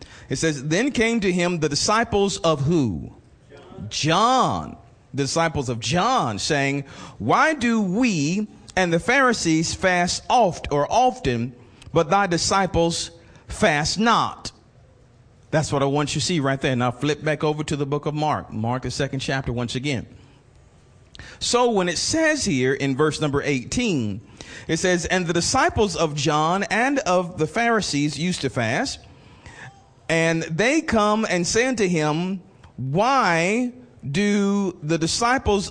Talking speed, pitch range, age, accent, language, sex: 150 wpm, 140-205 Hz, 40-59, American, English, male